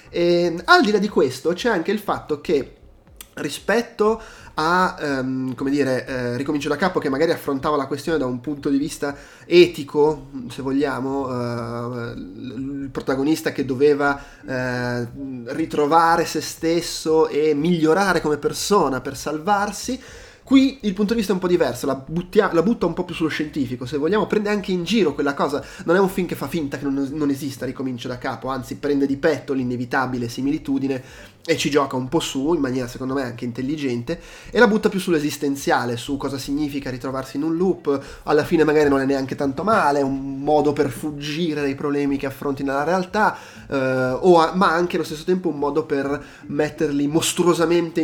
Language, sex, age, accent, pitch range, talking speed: Italian, male, 20-39, native, 135-170 Hz, 190 wpm